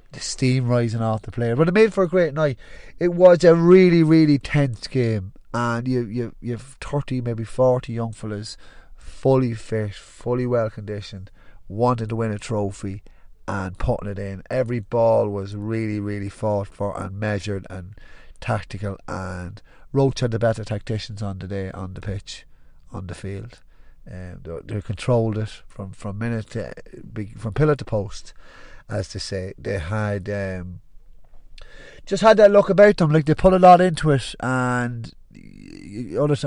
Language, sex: English, male